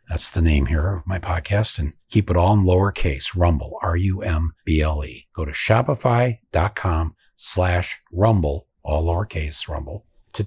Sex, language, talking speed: male, English, 140 wpm